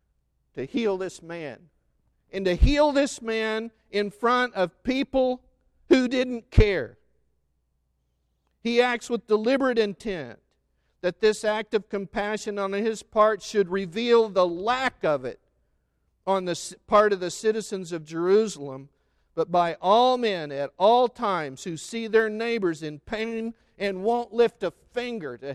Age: 50-69